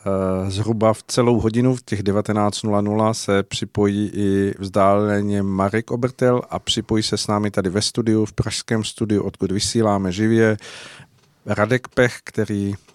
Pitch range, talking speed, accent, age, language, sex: 95-115 Hz, 140 wpm, native, 50-69, Czech, male